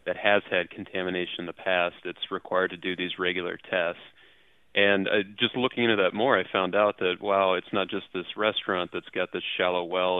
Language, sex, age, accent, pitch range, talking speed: English, male, 30-49, American, 90-95 Hz, 210 wpm